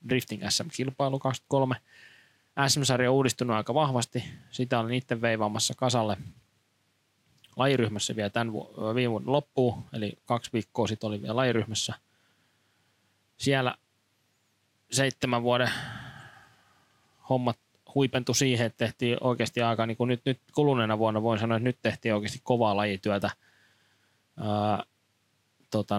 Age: 20-39